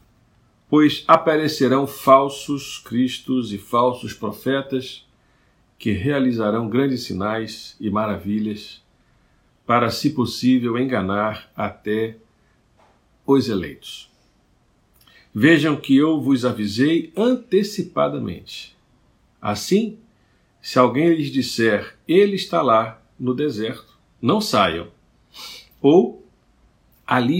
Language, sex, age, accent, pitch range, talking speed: Portuguese, male, 50-69, Brazilian, 105-135 Hz, 90 wpm